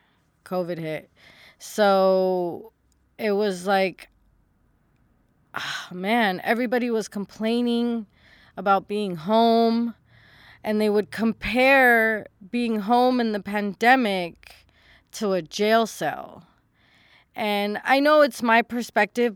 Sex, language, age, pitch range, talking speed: female, English, 20-39, 185-230 Hz, 100 wpm